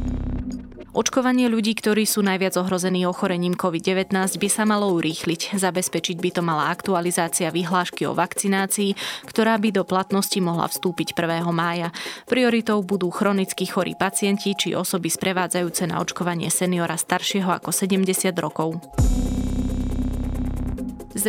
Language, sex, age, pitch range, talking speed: Slovak, female, 20-39, 175-200 Hz, 125 wpm